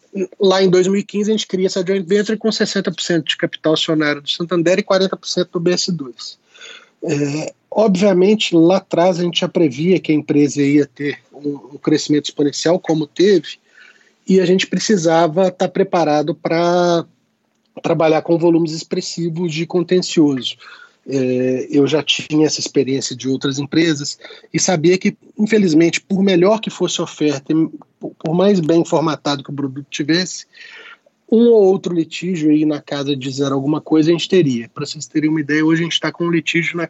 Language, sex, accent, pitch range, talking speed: Portuguese, male, Brazilian, 150-185 Hz, 170 wpm